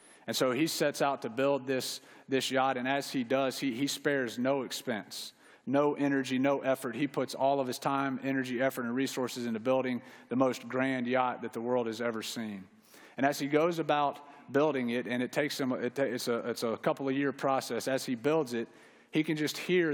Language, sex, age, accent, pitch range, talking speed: English, male, 40-59, American, 125-145 Hz, 215 wpm